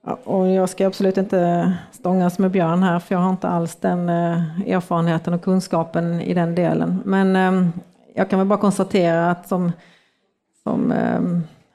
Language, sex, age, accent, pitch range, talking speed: Swedish, female, 40-59, native, 175-195 Hz, 160 wpm